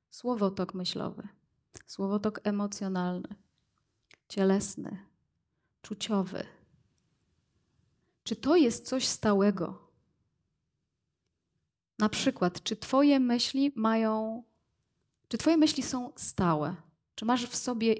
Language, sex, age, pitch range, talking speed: Polish, female, 30-49, 195-230 Hz, 85 wpm